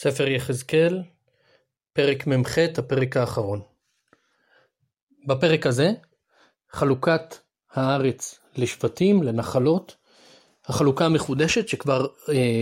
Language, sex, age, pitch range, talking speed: Hebrew, male, 30-49, 130-165 Hz, 75 wpm